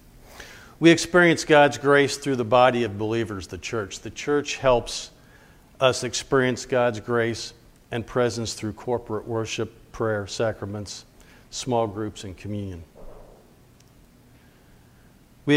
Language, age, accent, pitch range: English, 50-69, American, 105-135 Hz